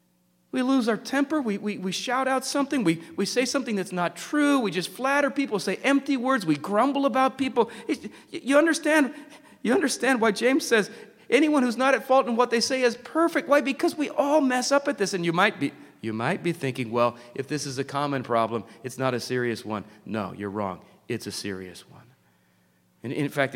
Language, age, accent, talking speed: English, 40-59, American, 215 wpm